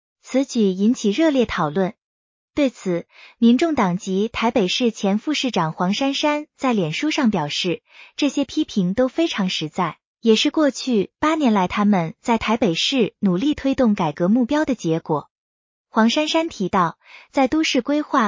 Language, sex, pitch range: Chinese, female, 195-275 Hz